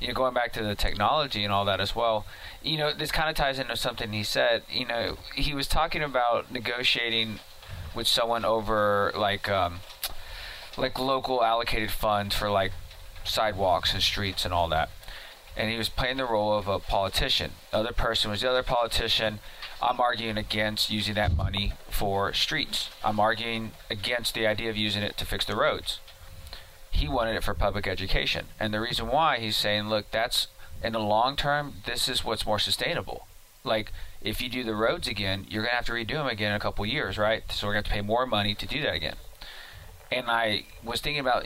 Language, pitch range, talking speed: English, 100-115 Hz, 205 wpm